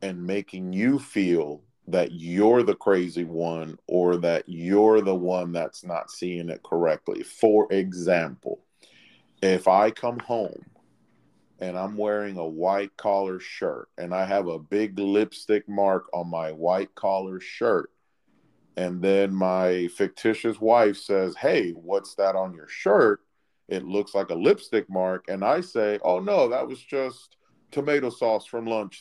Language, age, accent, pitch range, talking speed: English, 40-59, American, 90-105 Hz, 155 wpm